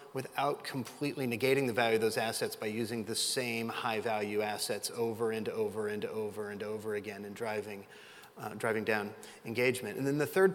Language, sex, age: English, male, 30-49